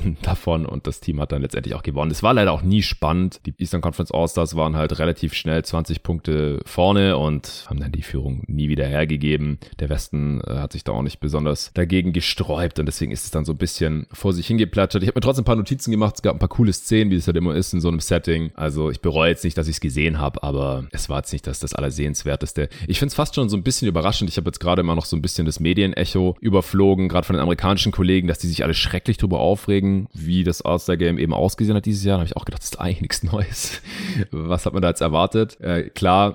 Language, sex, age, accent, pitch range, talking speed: German, male, 30-49, German, 80-95 Hz, 260 wpm